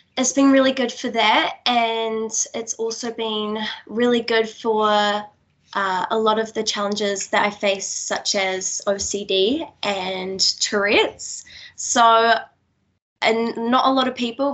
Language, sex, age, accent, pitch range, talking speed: English, female, 10-29, Australian, 205-235 Hz, 140 wpm